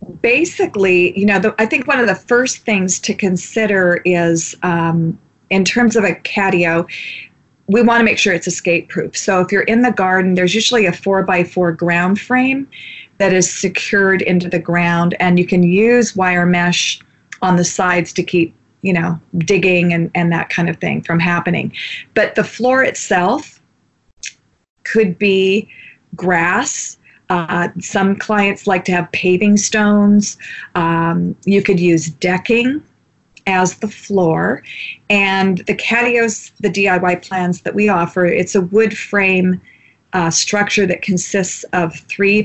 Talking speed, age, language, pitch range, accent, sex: 155 wpm, 40-59, English, 175-205 Hz, American, female